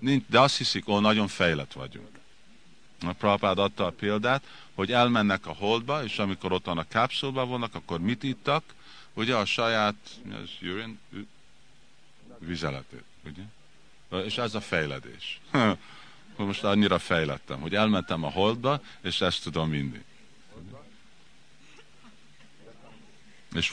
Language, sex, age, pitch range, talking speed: Hungarian, male, 50-69, 85-120 Hz, 125 wpm